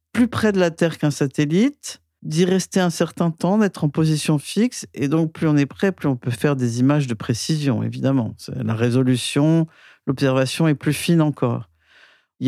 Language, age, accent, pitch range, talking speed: French, 50-69, French, 120-155 Hz, 190 wpm